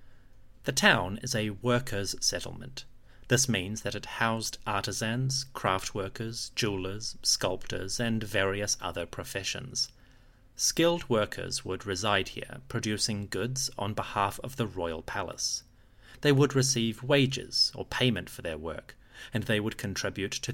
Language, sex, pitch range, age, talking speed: English, male, 100-125 Hz, 30-49, 135 wpm